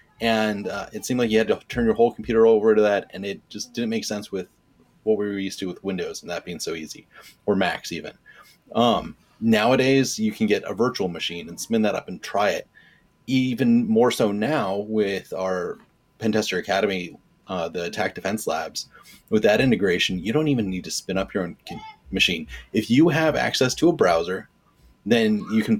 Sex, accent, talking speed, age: male, American, 205 wpm, 30-49